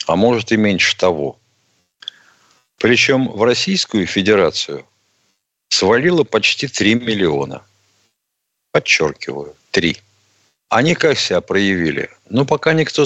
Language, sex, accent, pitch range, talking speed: Russian, male, native, 95-135 Hz, 100 wpm